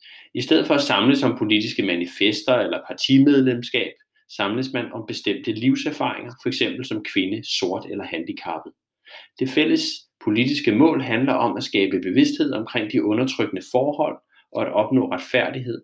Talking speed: 150 wpm